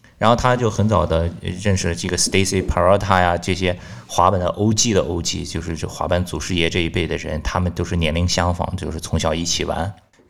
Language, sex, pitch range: Chinese, male, 85-105 Hz